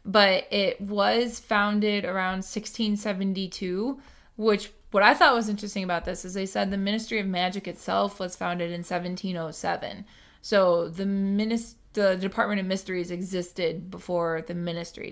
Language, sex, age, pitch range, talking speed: English, female, 20-39, 180-220 Hz, 145 wpm